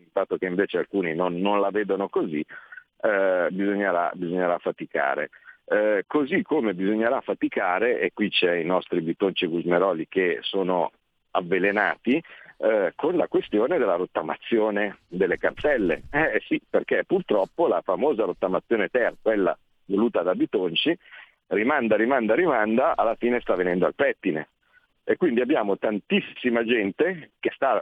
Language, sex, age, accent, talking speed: Italian, male, 50-69, native, 140 wpm